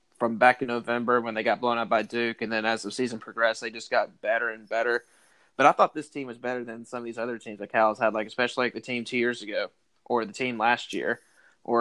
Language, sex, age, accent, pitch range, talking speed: English, male, 20-39, American, 115-125 Hz, 270 wpm